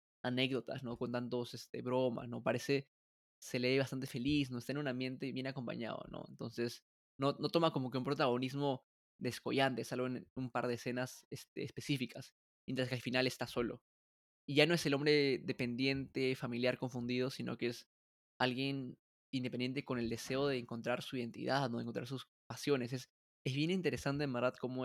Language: Spanish